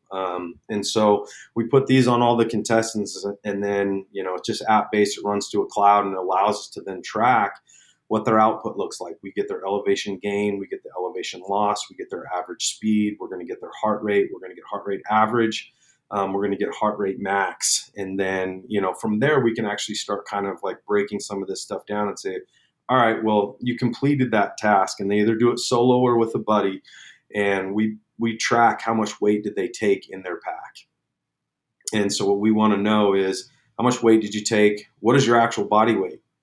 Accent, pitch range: American, 100-115 Hz